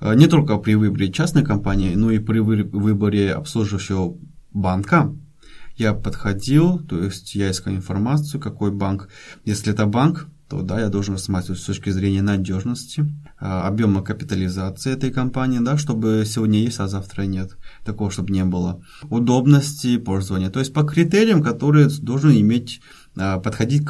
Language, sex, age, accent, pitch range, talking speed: Russian, male, 20-39, native, 100-145 Hz, 140 wpm